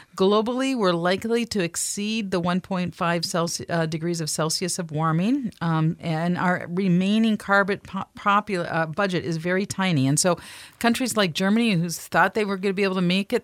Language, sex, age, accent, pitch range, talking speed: English, female, 50-69, American, 160-210 Hz, 190 wpm